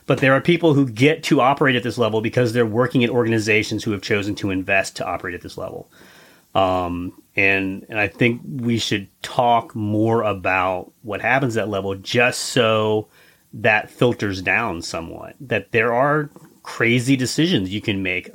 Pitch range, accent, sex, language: 100-125 Hz, American, male, English